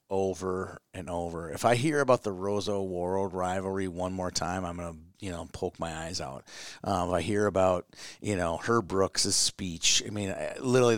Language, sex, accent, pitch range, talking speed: English, male, American, 95-115 Hz, 195 wpm